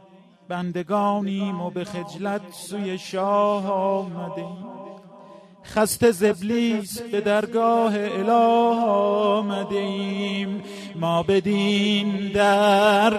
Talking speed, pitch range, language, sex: 75 wpm, 195-230 Hz, Persian, male